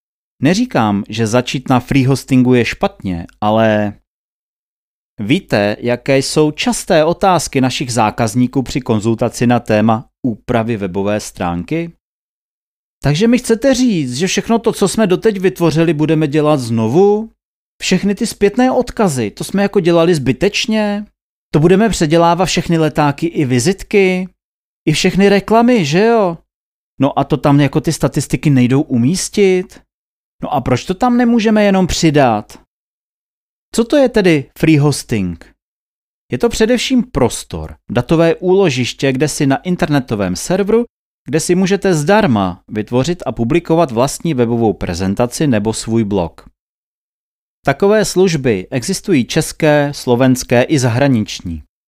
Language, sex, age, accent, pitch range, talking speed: Czech, male, 30-49, native, 120-190 Hz, 130 wpm